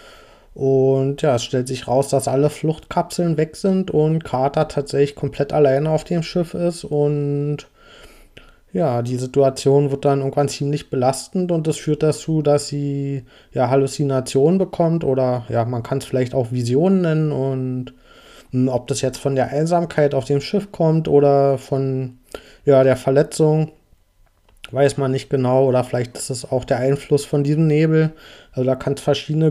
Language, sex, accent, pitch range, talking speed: German, male, German, 130-150 Hz, 170 wpm